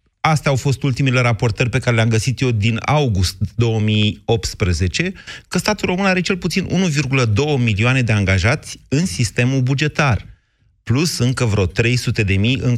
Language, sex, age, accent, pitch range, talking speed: Romanian, male, 30-49, native, 105-140 Hz, 155 wpm